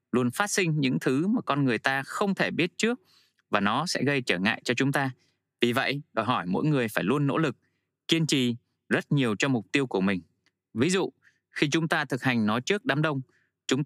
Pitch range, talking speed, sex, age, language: 120-155 Hz, 230 wpm, male, 20-39, Vietnamese